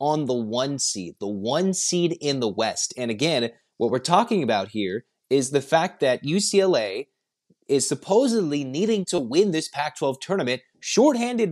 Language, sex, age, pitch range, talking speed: English, male, 30-49, 120-170 Hz, 160 wpm